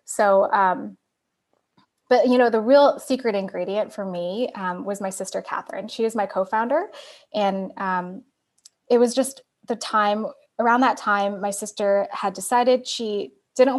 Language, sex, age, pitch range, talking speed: English, female, 10-29, 200-265 Hz, 155 wpm